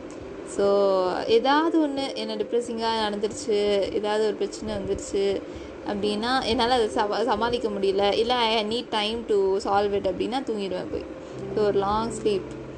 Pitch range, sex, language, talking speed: 205-270 Hz, female, Tamil, 140 wpm